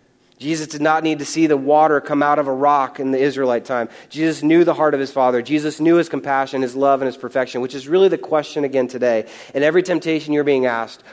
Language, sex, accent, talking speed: English, male, American, 250 wpm